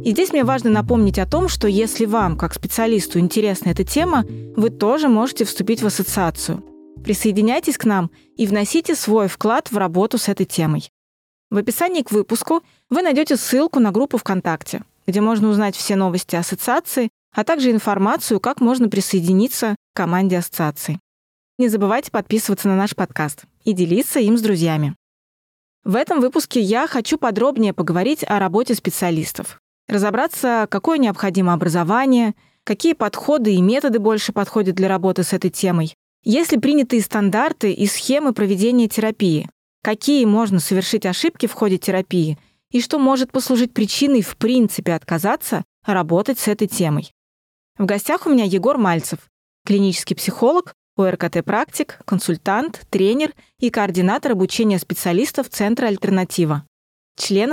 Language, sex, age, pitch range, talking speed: Russian, female, 20-39, 185-245 Hz, 145 wpm